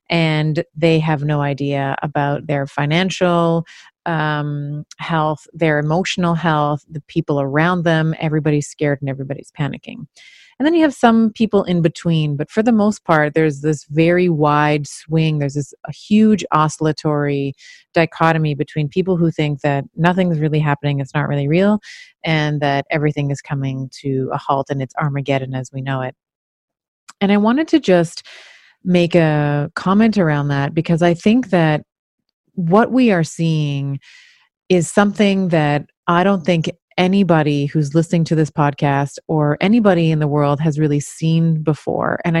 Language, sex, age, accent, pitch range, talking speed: English, female, 30-49, American, 145-175 Hz, 160 wpm